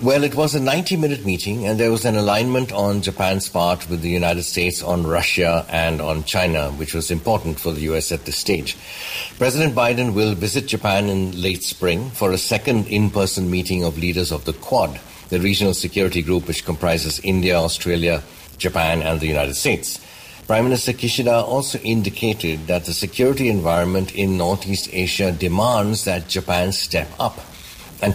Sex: male